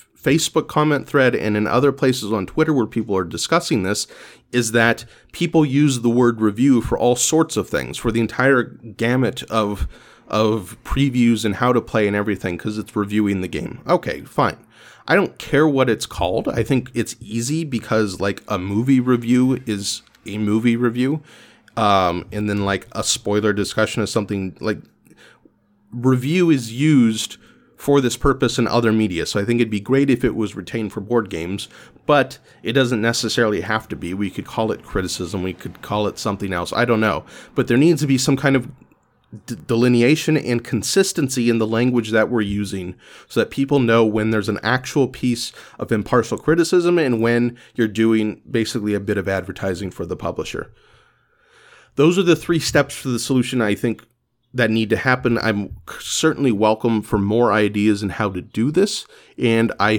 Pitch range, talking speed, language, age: 105-130 Hz, 185 wpm, English, 30-49